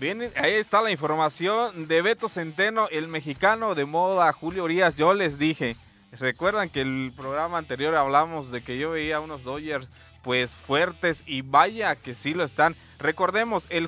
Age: 30-49